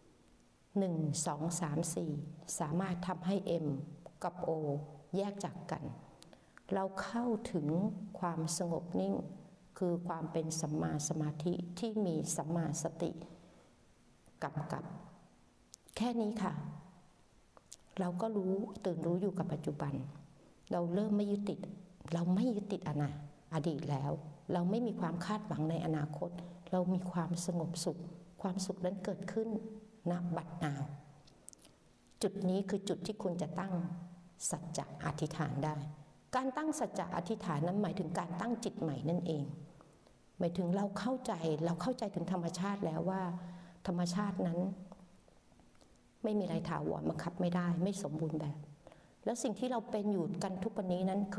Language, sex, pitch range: Thai, female, 160-195 Hz